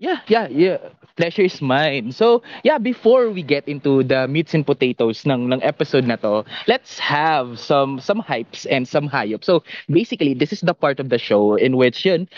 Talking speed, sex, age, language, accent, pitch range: 195 wpm, male, 20-39, Filipino, native, 120-160 Hz